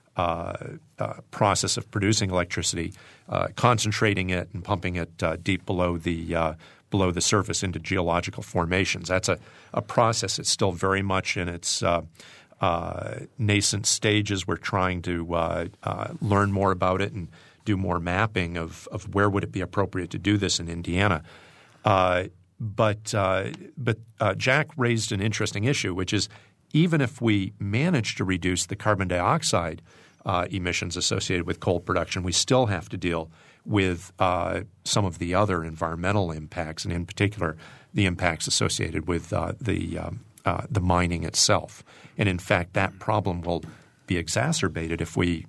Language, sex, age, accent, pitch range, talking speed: English, male, 50-69, American, 85-105 Hz, 165 wpm